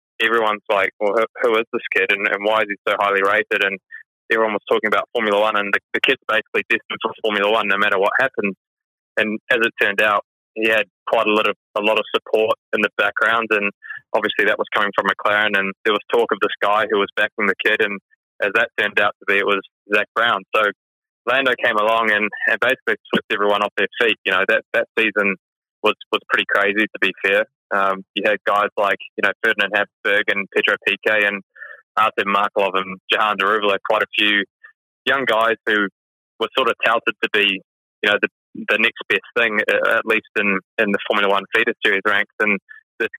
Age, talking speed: 20-39, 215 wpm